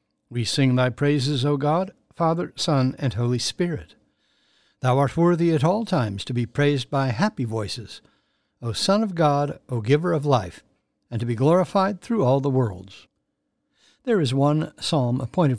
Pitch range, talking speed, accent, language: 125-160 Hz, 170 wpm, American, English